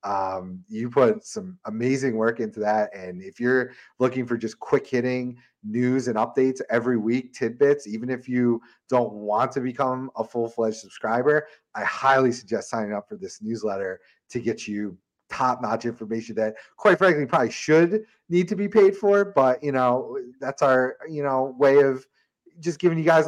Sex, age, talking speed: male, 30-49, 180 wpm